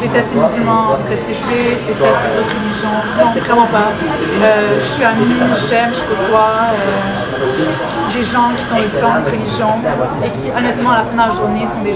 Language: English